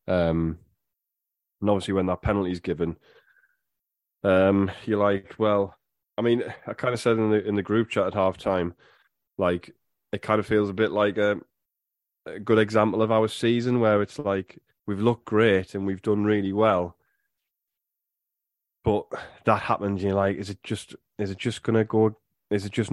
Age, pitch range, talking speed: 20-39, 90-110 Hz, 185 wpm